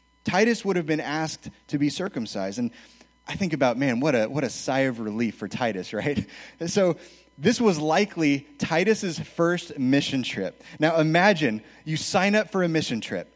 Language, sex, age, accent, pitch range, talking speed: English, male, 30-49, American, 140-175 Hz, 185 wpm